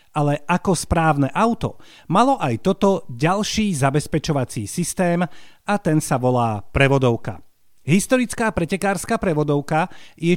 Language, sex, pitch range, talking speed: Slovak, male, 135-195 Hz, 110 wpm